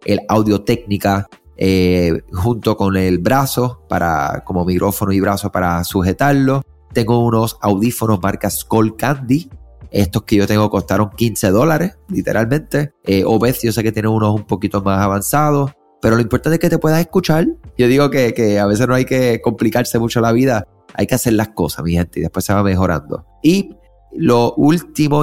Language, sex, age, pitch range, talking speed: Spanish, male, 30-49, 95-120 Hz, 180 wpm